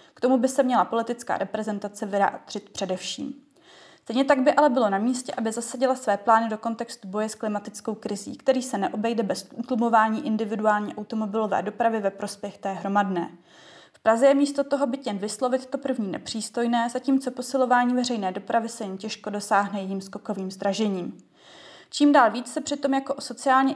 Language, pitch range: Czech, 210-260 Hz